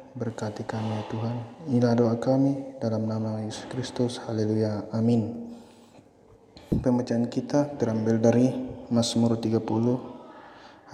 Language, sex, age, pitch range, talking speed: Indonesian, male, 20-39, 110-125 Hz, 105 wpm